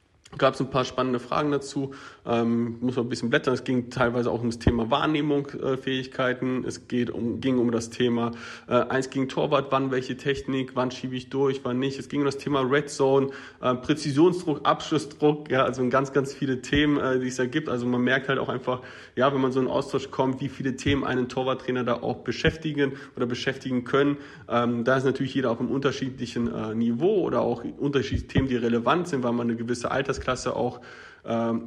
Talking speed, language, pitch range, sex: 210 wpm, German, 120-135 Hz, male